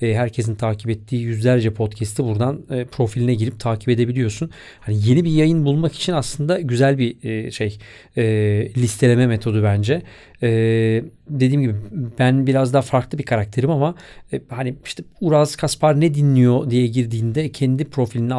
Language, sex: Turkish, male